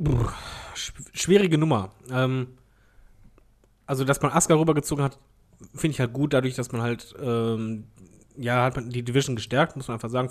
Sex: male